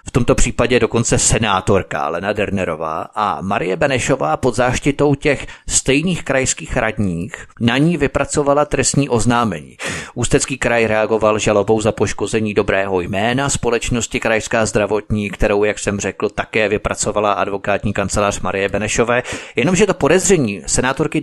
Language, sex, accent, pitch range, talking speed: Czech, male, native, 115-150 Hz, 130 wpm